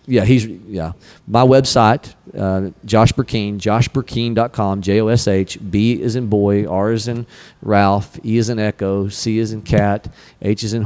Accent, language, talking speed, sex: American, English, 165 wpm, male